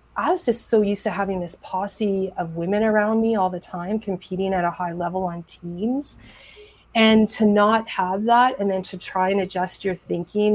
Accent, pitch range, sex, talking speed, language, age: American, 175-200 Hz, female, 205 wpm, English, 30-49